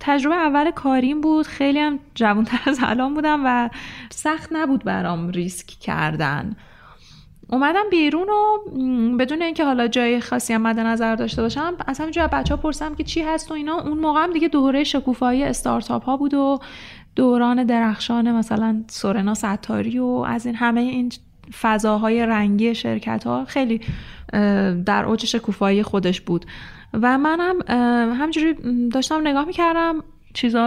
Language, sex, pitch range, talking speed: Persian, female, 210-275 Hz, 145 wpm